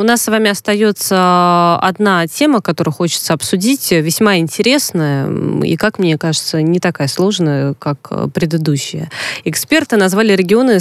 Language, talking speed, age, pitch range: Russian, 135 wpm, 20-39, 155-190 Hz